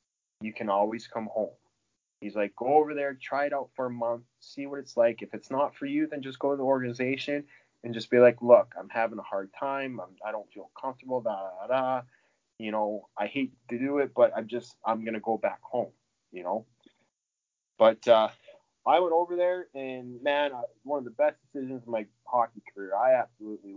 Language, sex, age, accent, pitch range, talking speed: English, male, 20-39, American, 115-135 Hz, 205 wpm